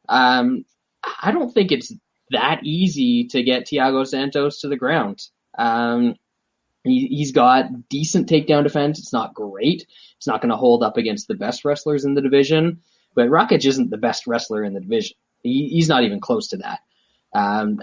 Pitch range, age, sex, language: 120-165 Hz, 10-29, male, English